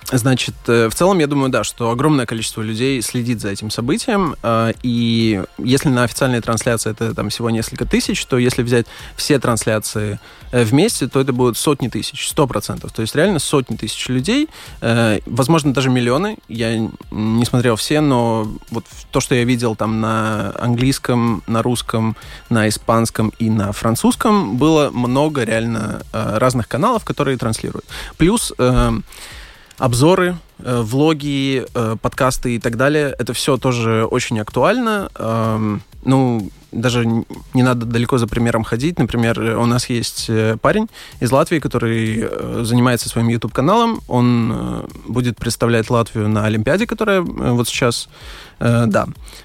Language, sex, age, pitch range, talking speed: Russian, male, 20-39, 115-135 Hz, 140 wpm